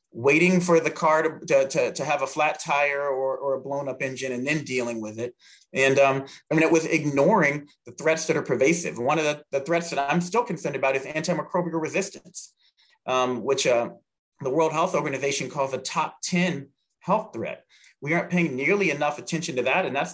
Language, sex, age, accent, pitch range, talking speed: English, male, 30-49, American, 135-165 Hz, 210 wpm